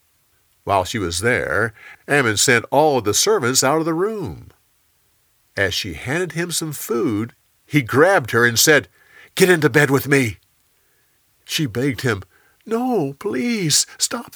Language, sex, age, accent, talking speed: English, male, 50-69, American, 150 wpm